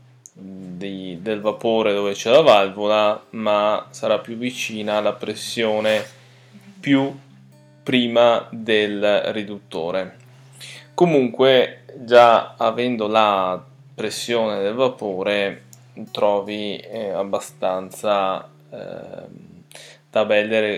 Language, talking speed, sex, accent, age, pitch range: Italian, 80 wpm, male, native, 10-29, 100-125 Hz